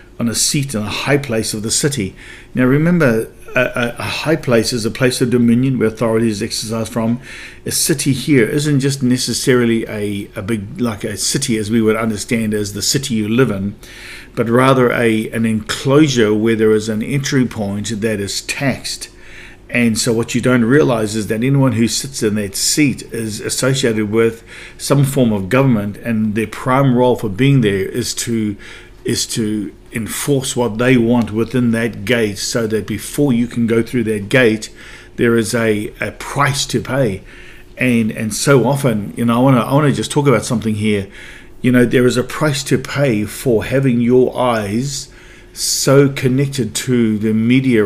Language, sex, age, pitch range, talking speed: English, male, 50-69, 110-130 Hz, 190 wpm